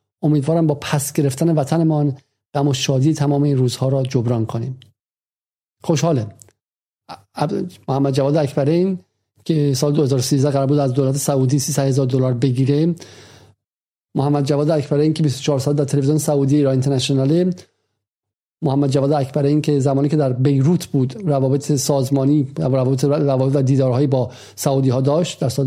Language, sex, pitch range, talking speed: Persian, male, 135-175 Hz, 150 wpm